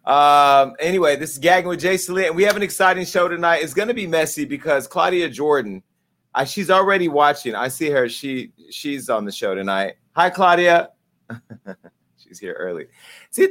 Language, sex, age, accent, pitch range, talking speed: English, male, 30-49, American, 135-185 Hz, 190 wpm